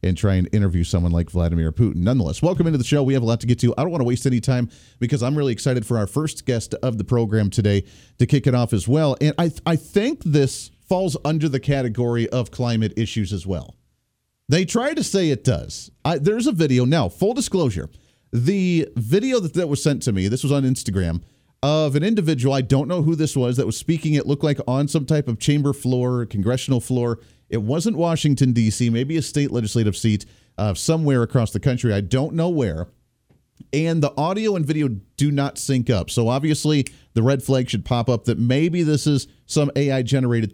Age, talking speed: 40-59, 220 wpm